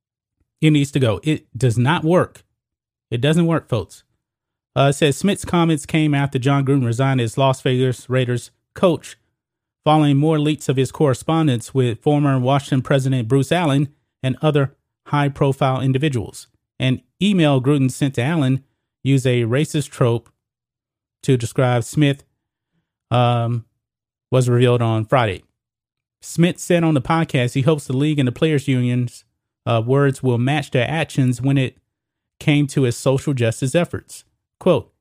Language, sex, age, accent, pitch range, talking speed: English, male, 30-49, American, 120-150 Hz, 155 wpm